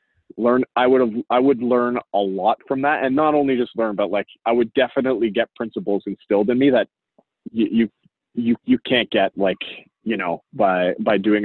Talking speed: 205 wpm